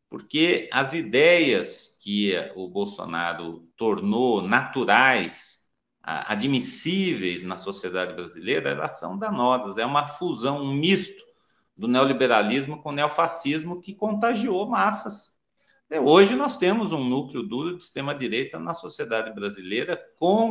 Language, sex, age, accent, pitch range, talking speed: Portuguese, male, 50-69, Brazilian, 120-190 Hz, 115 wpm